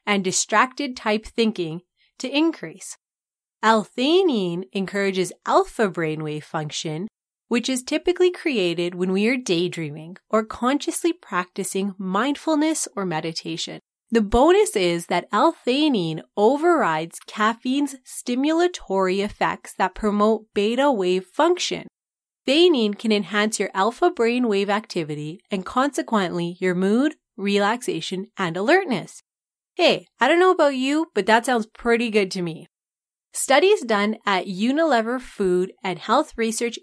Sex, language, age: female, English, 30-49